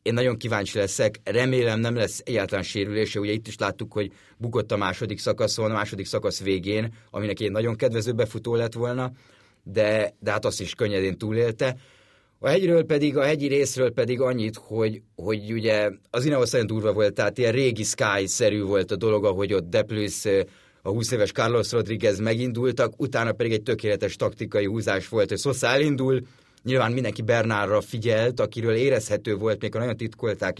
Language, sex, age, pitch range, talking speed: Hungarian, male, 30-49, 105-125 Hz, 175 wpm